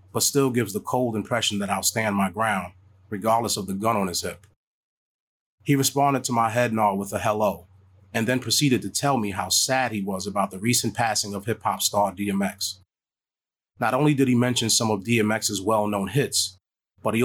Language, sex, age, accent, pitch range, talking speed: English, male, 30-49, American, 100-120 Hz, 200 wpm